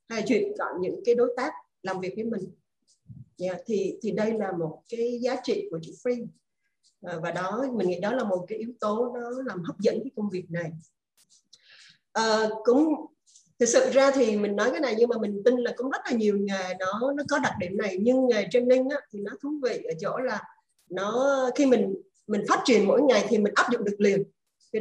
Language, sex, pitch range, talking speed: Vietnamese, female, 200-255 Hz, 225 wpm